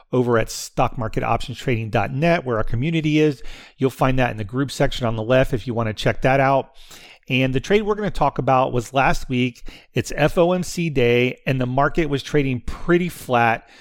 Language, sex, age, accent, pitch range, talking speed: English, male, 40-59, American, 120-150 Hz, 195 wpm